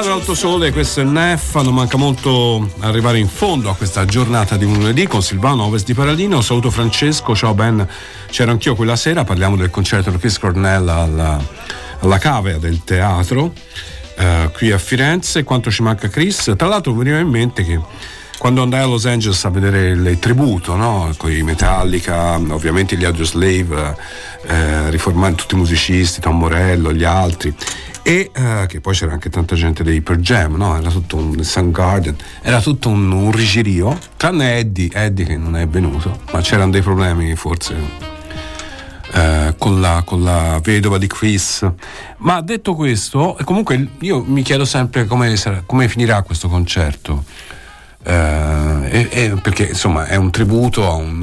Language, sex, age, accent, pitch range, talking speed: Italian, male, 50-69, native, 85-120 Hz, 170 wpm